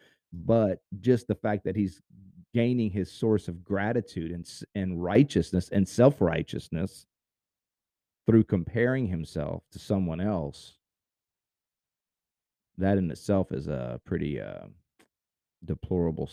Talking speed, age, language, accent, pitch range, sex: 110 wpm, 40-59, English, American, 95-125 Hz, male